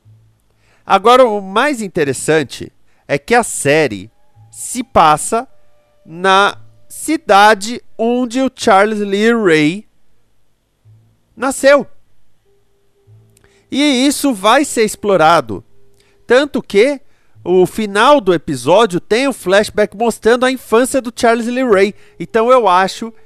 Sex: male